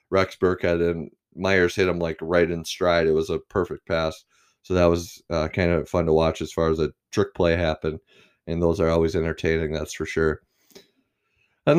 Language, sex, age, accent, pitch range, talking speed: English, male, 20-39, American, 80-100 Hz, 205 wpm